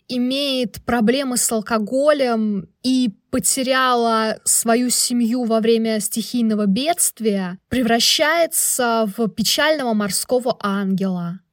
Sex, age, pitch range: female, 20-39, 210-255 Hz